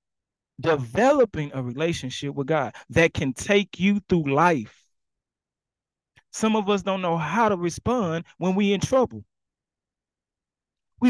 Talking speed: 130 wpm